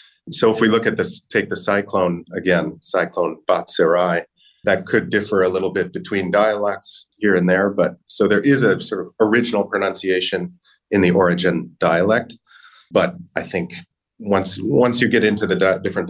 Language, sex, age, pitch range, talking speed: English, male, 40-59, 90-115 Hz, 175 wpm